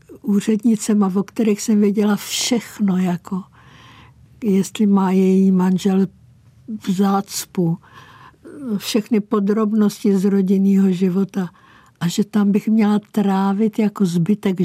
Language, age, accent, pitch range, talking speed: Czech, 60-79, native, 170-200 Hz, 105 wpm